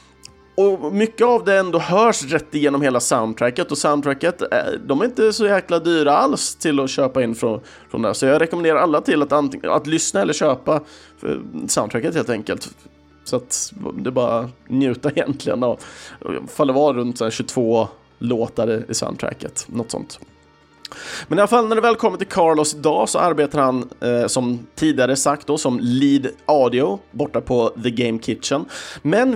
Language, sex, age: Swedish, male, 30-49